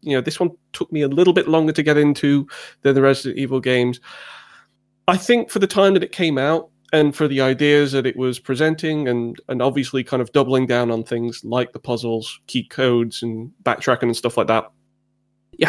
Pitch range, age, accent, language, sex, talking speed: 120-150 Hz, 20-39, British, English, male, 215 wpm